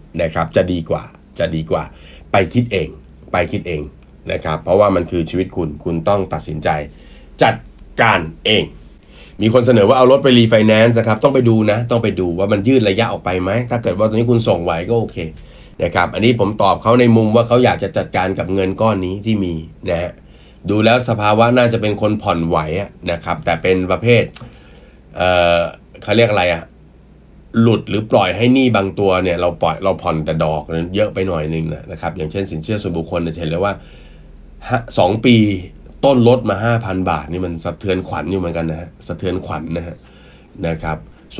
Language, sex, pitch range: Thai, male, 85-110 Hz